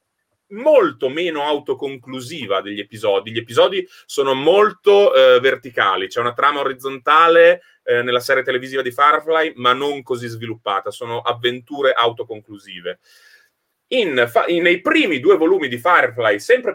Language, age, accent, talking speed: Italian, 30-49, native, 125 wpm